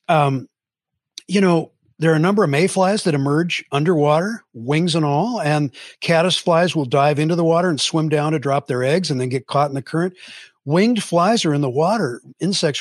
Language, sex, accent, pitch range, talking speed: English, male, American, 145-180 Hz, 205 wpm